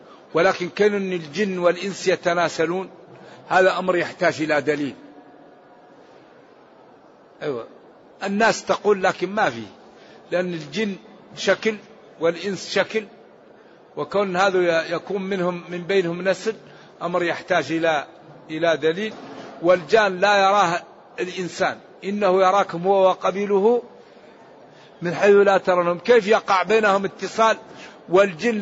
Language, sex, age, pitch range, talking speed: Arabic, male, 60-79, 175-205 Hz, 105 wpm